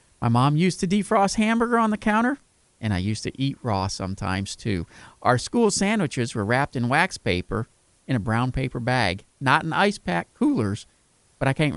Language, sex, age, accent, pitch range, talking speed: English, male, 50-69, American, 110-185 Hz, 195 wpm